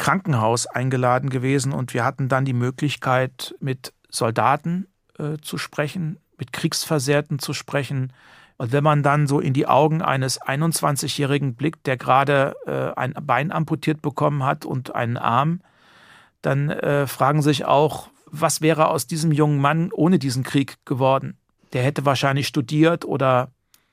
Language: German